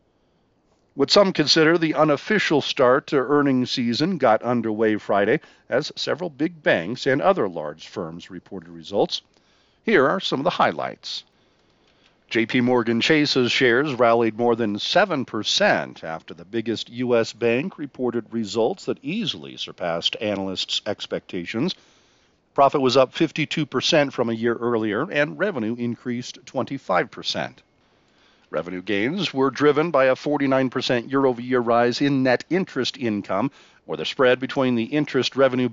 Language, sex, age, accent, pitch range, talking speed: English, male, 50-69, American, 115-150 Hz, 135 wpm